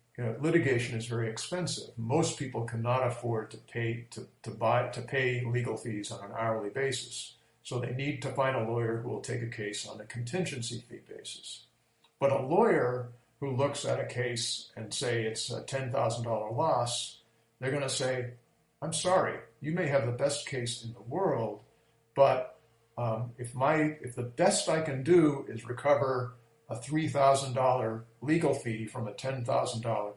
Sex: male